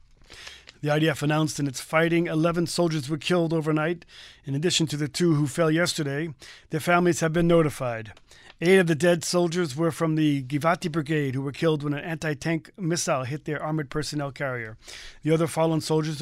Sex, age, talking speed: male, 40-59, 185 wpm